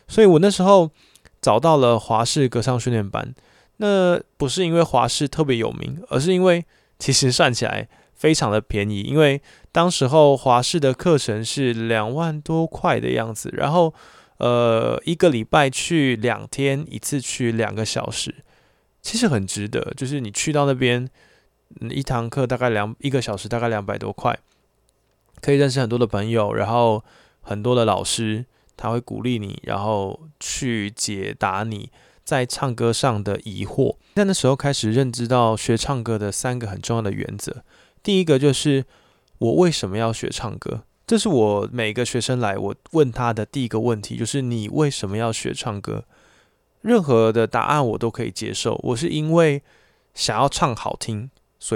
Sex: male